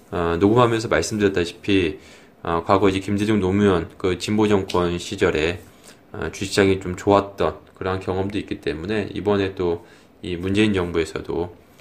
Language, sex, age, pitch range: Korean, male, 20-39, 95-120 Hz